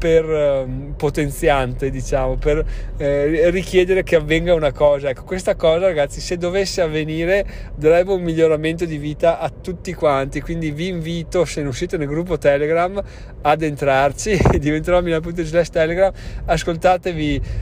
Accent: native